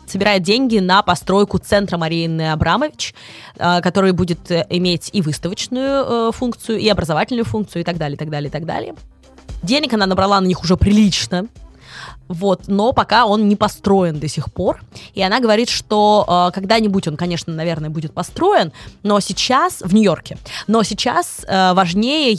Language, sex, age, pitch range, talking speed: Russian, female, 20-39, 165-215 Hz, 160 wpm